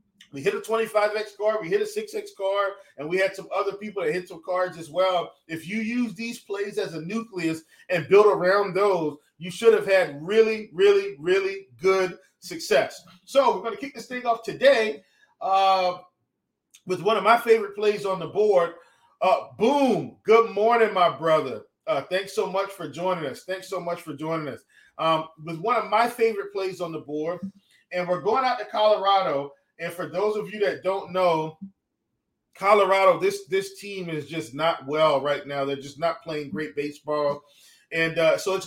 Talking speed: 195 wpm